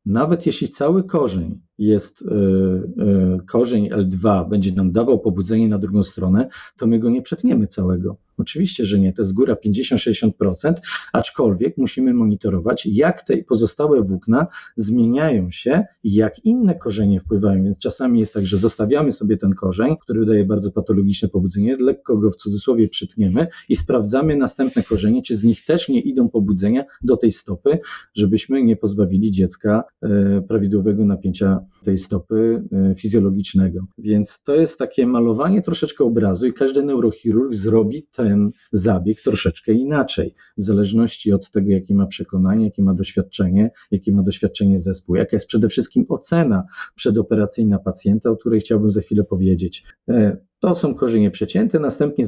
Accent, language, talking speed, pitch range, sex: native, Polish, 150 wpm, 100-120 Hz, male